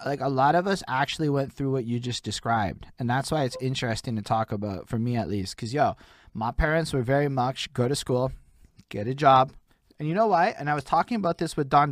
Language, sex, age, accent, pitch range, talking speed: English, male, 20-39, American, 115-145 Hz, 245 wpm